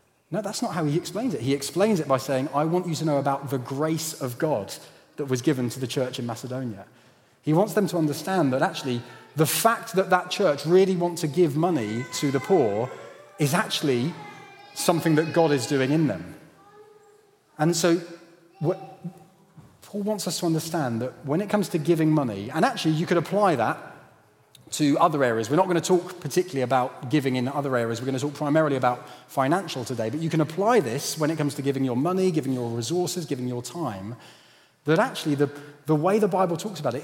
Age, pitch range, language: 30-49, 135-180 Hz, English